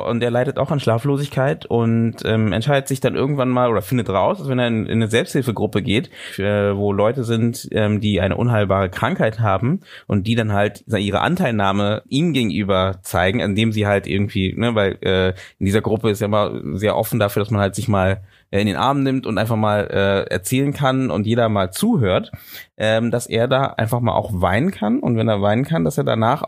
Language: German